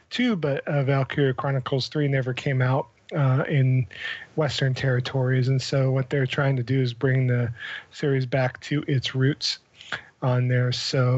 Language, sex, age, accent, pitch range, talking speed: English, male, 40-59, American, 130-150 Hz, 165 wpm